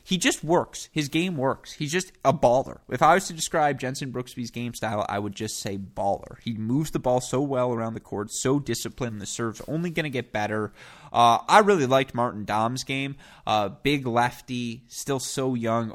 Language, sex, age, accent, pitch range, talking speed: English, male, 20-39, American, 105-130 Hz, 205 wpm